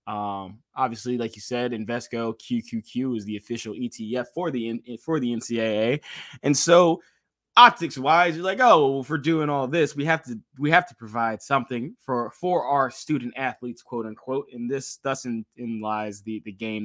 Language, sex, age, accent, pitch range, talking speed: English, male, 20-39, American, 115-140 Hz, 180 wpm